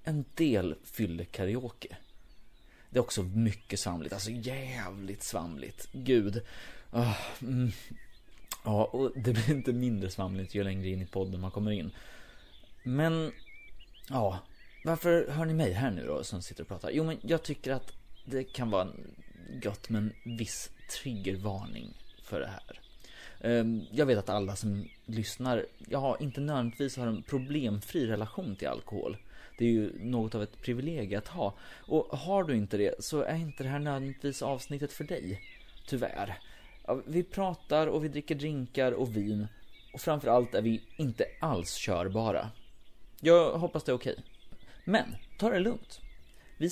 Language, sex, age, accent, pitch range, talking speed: Swedish, male, 30-49, native, 105-155 Hz, 155 wpm